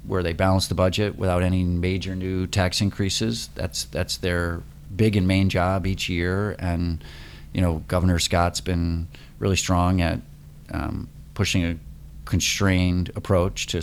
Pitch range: 85-95 Hz